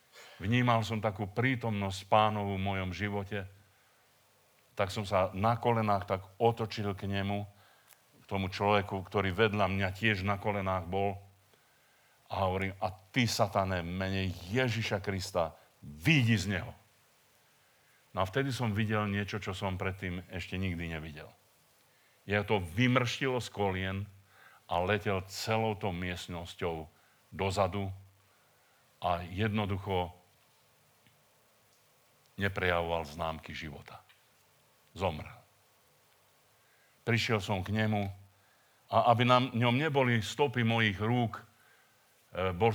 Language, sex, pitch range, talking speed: Czech, male, 95-110 Hz, 115 wpm